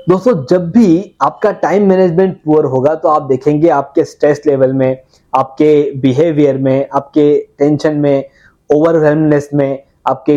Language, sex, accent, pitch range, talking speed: Hindi, male, native, 140-180 Hz, 135 wpm